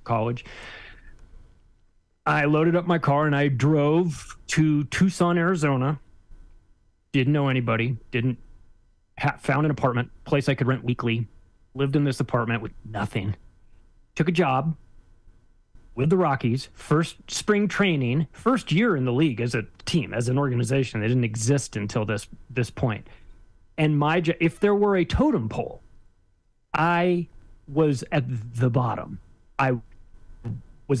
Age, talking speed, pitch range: 30-49, 140 wpm, 115-155 Hz